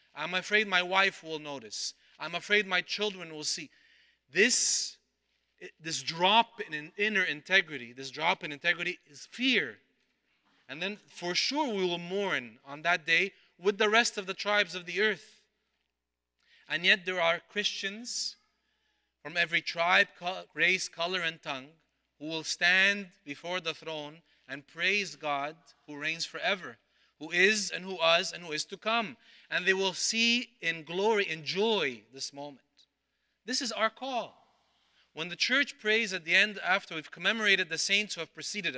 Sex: male